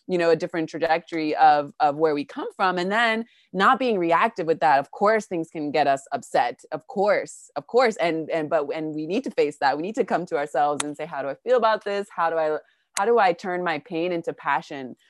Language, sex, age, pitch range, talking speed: English, female, 20-39, 155-210 Hz, 250 wpm